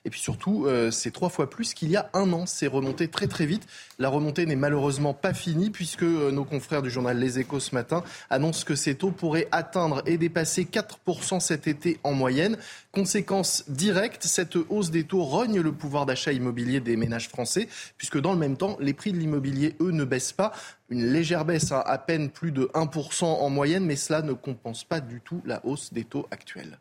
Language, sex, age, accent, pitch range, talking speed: French, male, 20-39, French, 145-185 Hz, 215 wpm